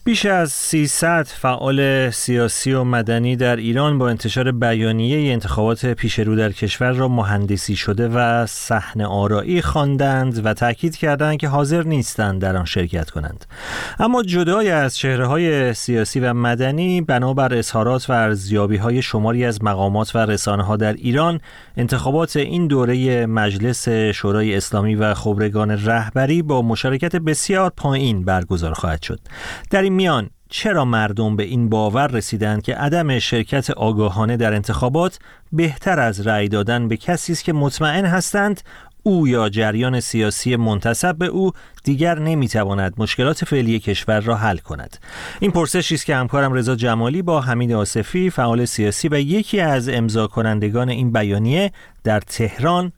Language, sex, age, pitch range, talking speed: Persian, male, 30-49, 110-150 Hz, 145 wpm